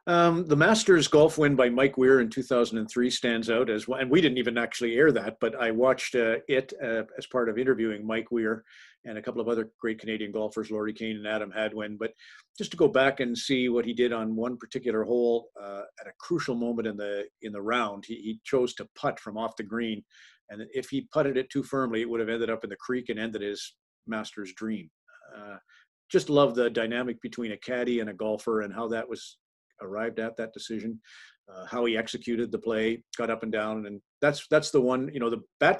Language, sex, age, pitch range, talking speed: English, male, 50-69, 110-125 Hz, 230 wpm